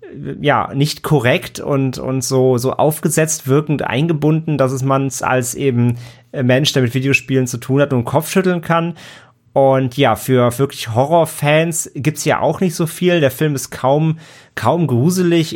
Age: 30-49